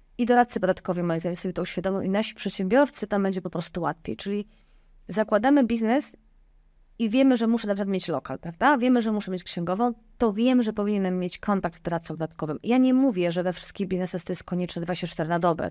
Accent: native